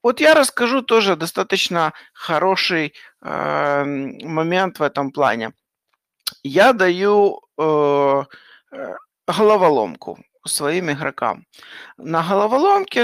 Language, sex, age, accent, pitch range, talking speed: Ukrainian, male, 50-69, native, 150-230 Hz, 85 wpm